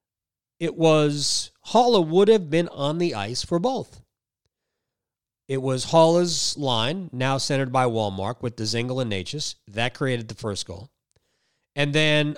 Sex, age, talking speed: male, 40-59, 145 wpm